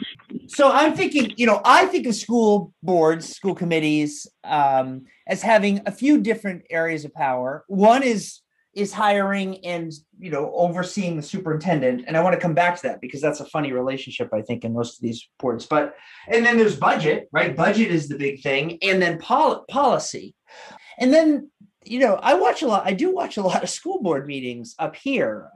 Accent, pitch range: American, 150-220 Hz